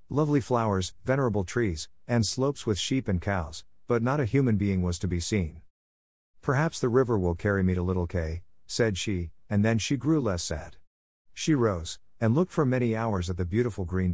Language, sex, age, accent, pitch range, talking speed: English, male, 50-69, American, 85-125 Hz, 200 wpm